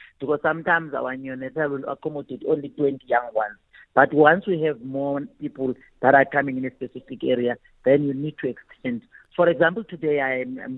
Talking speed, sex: 185 wpm, female